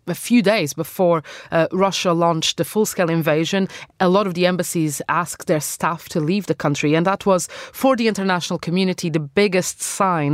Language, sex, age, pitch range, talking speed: English, female, 30-49, 170-205 Hz, 185 wpm